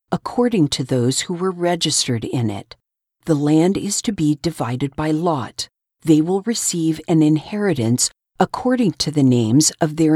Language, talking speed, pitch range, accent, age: English, 160 wpm, 135-185 Hz, American, 50-69